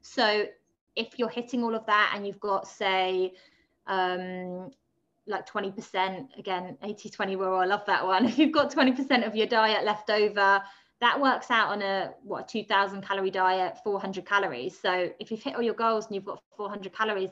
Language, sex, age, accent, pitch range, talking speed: English, female, 20-39, British, 180-220 Hz, 190 wpm